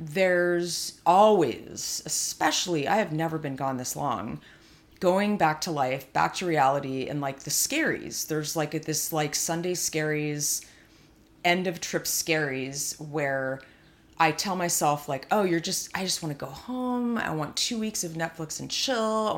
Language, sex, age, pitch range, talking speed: English, female, 30-49, 150-185 Hz, 165 wpm